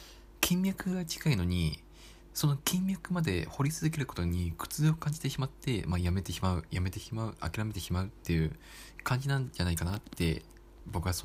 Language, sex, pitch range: Japanese, male, 85-115 Hz